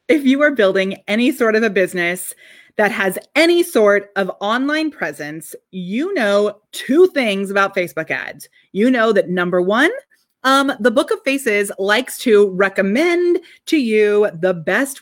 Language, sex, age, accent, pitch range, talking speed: English, female, 30-49, American, 195-285 Hz, 160 wpm